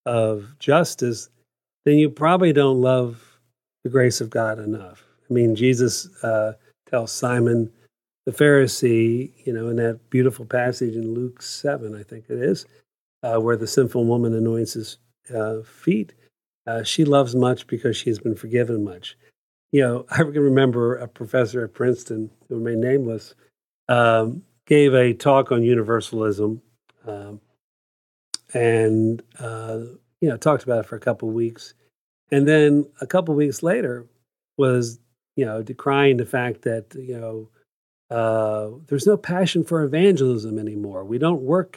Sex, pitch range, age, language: male, 115-140 Hz, 50-69, English